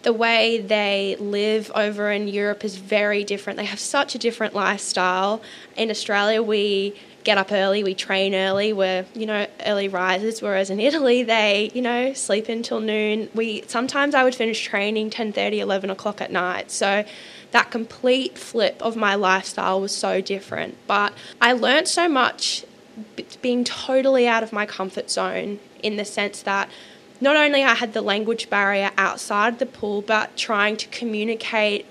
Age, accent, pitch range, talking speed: 10-29, Australian, 200-225 Hz, 170 wpm